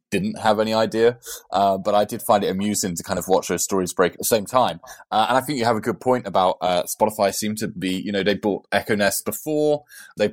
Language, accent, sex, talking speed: English, British, male, 260 wpm